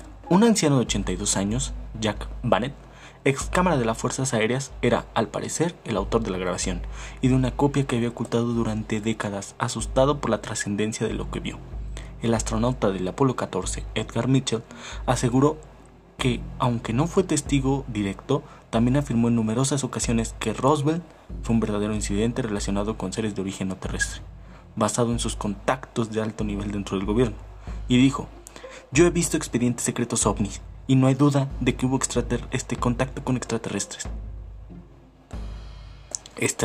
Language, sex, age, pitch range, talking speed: Spanish, male, 20-39, 100-130 Hz, 165 wpm